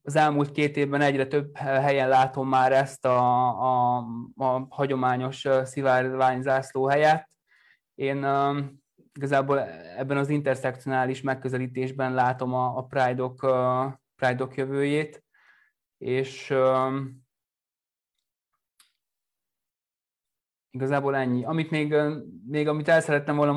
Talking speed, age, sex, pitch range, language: 105 wpm, 20-39, male, 130-140 Hz, Hungarian